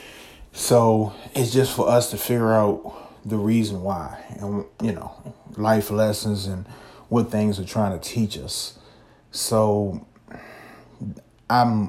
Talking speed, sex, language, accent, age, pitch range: 130 wpm, male, English, American, 30-49, 100-110 Hz